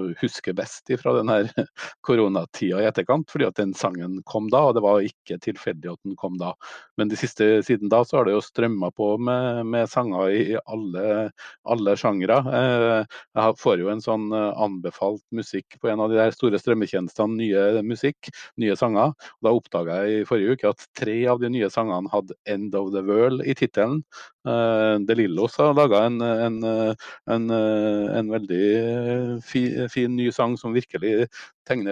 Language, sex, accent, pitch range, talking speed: English, male, Norwegian, 105-120 Hz, 175 wpm